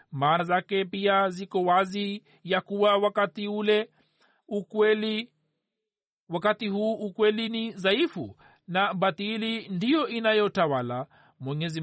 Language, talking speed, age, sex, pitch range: Swahili, 90 wpm, 50-69, male, 185-210 Hz